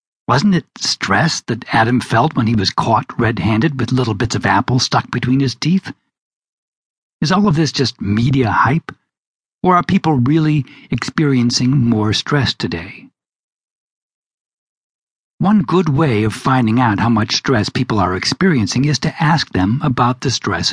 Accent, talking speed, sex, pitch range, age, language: American, 155 wpm, male, 110-145 Hz, 60-79, English